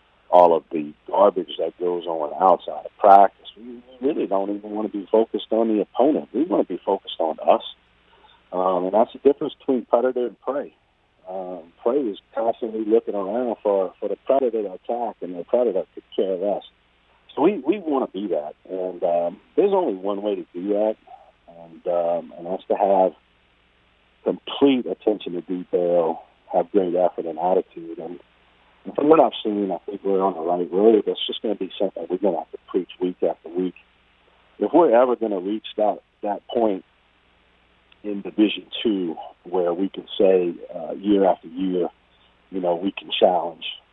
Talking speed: 190 wpm